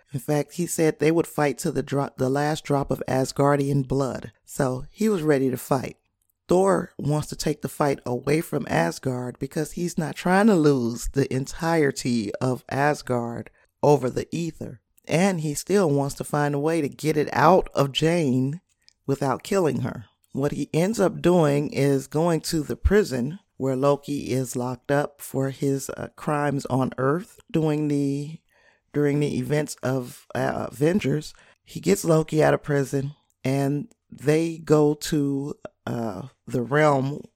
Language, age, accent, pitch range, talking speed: English, 40-59, American, 130-155 Hz, 165 wpm